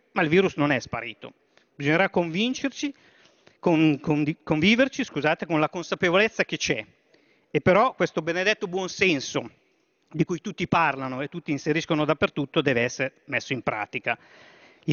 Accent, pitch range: native, 145-180 Hz